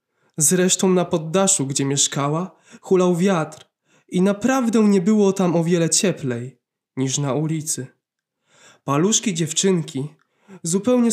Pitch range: 145-195 Hz